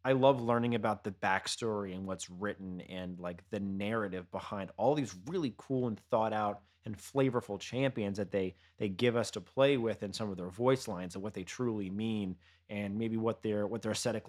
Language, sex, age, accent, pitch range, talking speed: English, male, 30-49, American, 95-125 Hz, 210 wpm